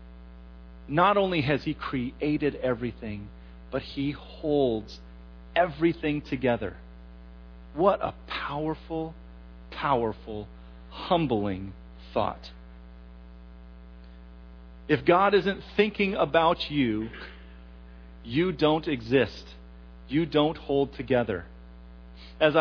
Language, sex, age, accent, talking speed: English, male, 40-59, American, 80 wpm